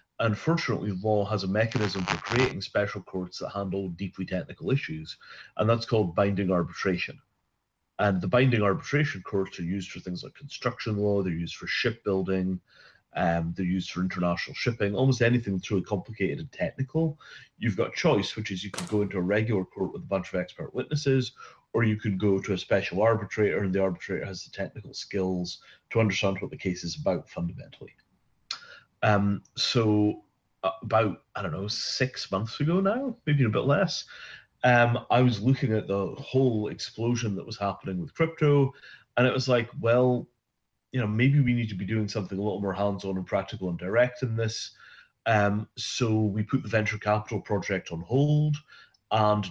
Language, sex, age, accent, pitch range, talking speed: English, male, 30-49, British, 95-120 Hz, 185 wpm